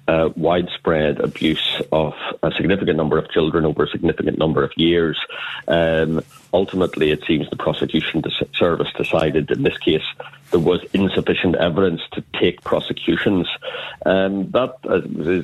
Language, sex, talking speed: English, male, 145 wpm